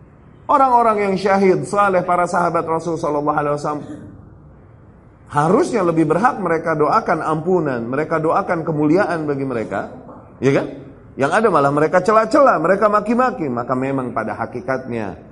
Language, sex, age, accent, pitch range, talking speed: Indonesian, male, 30-49, native, 145-200 Hz, 135 wpm